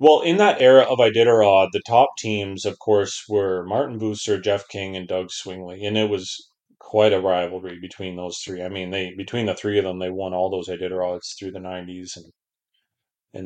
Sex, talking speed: male, 205 wpm